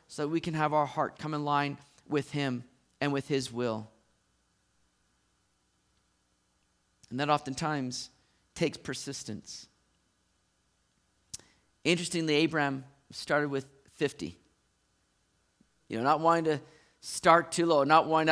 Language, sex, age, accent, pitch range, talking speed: English, male, 40-59, American, 140-180 Hz, 120 wpm